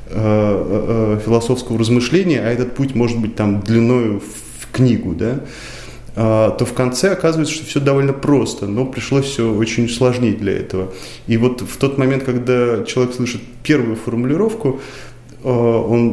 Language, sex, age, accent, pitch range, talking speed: Russian, male, 20-39, native, 105-125 Hz, 140 wpm